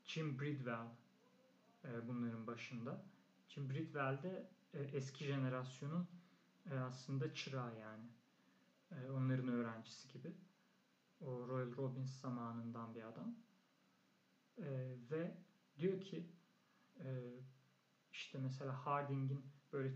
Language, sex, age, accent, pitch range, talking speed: Turkish, male, 40-59, native, 125-145 Hz, 100 wpm